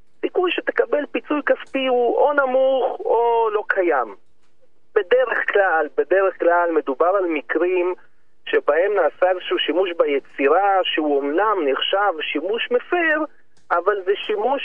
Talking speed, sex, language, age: 125 wpm, male, Hebrew, 40-59